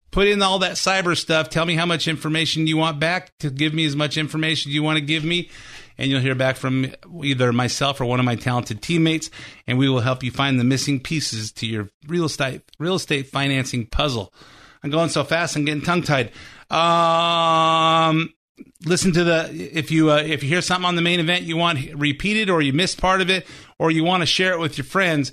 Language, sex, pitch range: English, male, 135-160 Hz